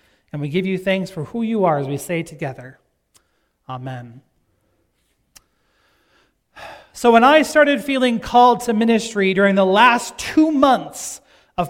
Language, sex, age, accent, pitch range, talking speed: English, male, 40-59, American, 165-230 Hz, 145 wpm